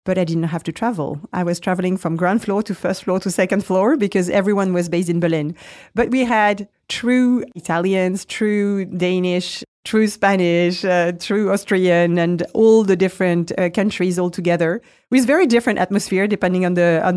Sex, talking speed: female, 180 wpm